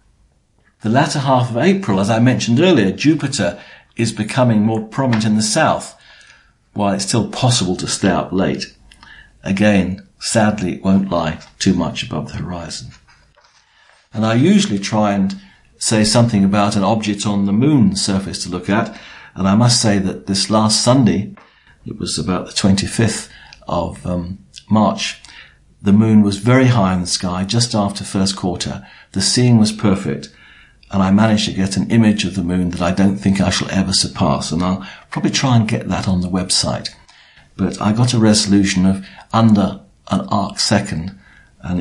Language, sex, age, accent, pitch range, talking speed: English, male, 50-69, British, 95-115 Hz, 175 wpm